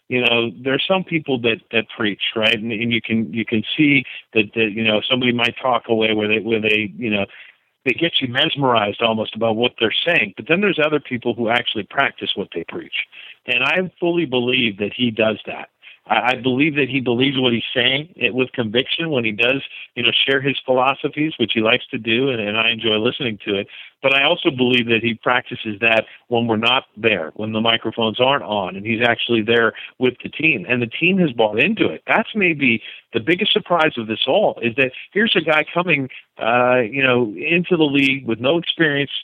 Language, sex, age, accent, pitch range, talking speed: English, male, 50-69, American, 115-140 Hz, 220 wpm